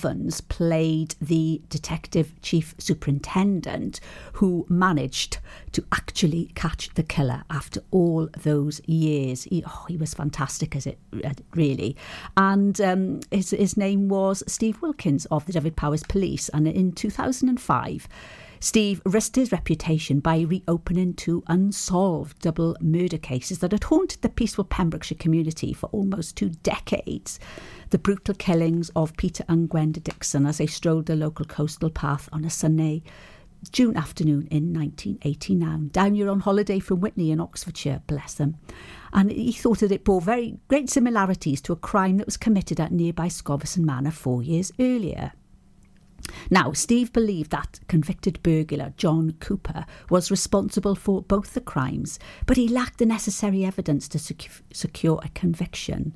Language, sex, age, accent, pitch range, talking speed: English, female, 50-69, British, 155-200 Hz, 150 wpm